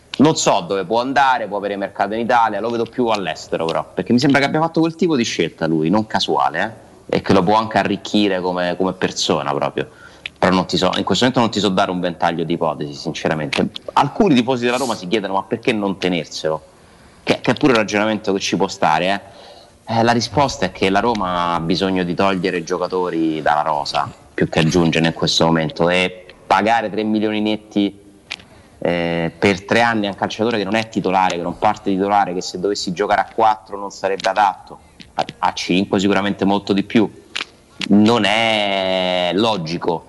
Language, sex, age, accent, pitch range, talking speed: Italian, male, 30-49, native, 90-105 Hz, 200 wpm